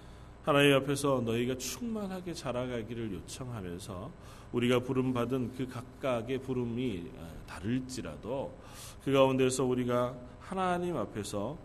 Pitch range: 100-145 Hz